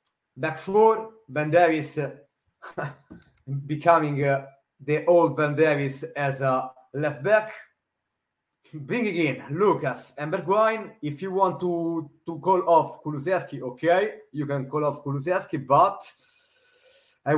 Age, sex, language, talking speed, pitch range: 30-49, male, English, 125 wpm, 140-190 Hz